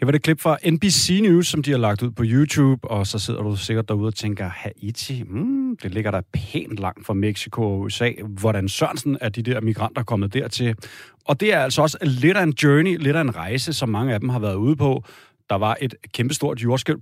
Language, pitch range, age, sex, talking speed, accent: Danish, 110-150 Hz, 30-49, male, 235 wpm, native